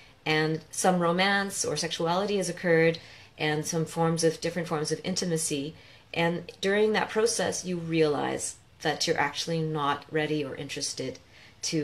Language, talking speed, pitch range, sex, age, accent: English, 145 wpm, 145-165 Hz, female, 30-49, American